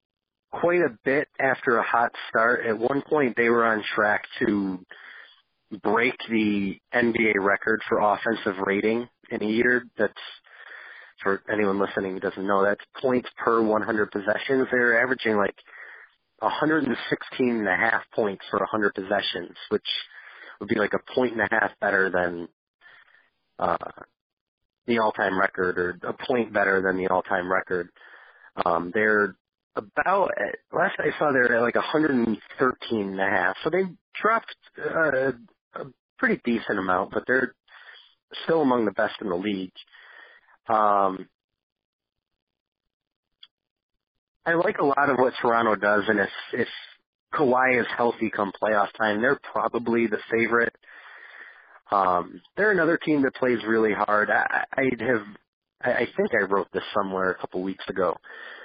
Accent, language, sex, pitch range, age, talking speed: American, English, male, 95-120 Hz, 30-49, 145 wpm